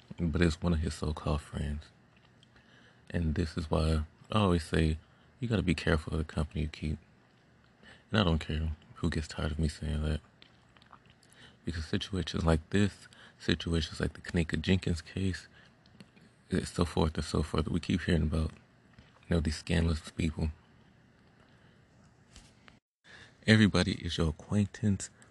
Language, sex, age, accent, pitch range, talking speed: English, male, 30-49, American, 80-90 Hz, 150 wpm